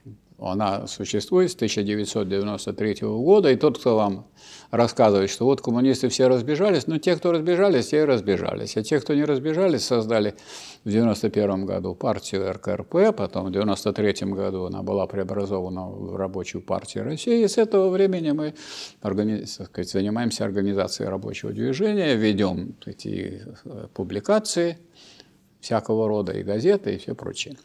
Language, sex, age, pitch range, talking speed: Russian, male, 50-69, 100-150 Hz, 135 wpm